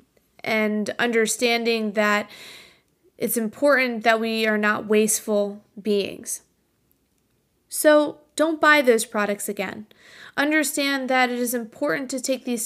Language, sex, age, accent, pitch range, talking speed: English, female, 20-39, American, 215-255 Hz, 120 wpm